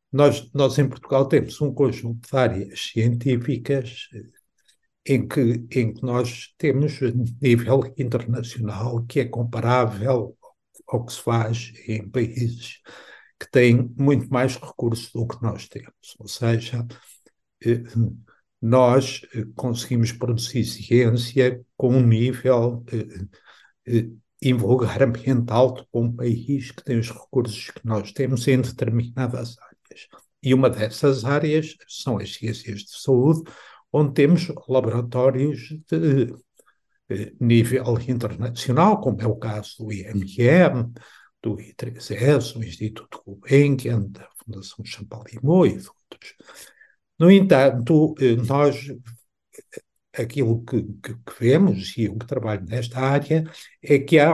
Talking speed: 120 wpm